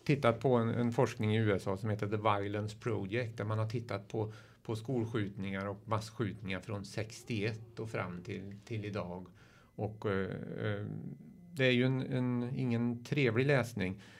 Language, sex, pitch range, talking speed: Swedish, male, 105-125 Hz, 160 wpm